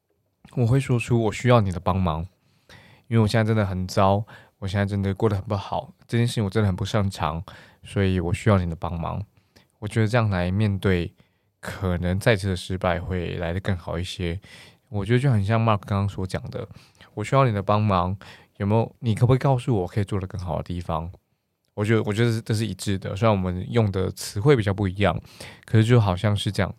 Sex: male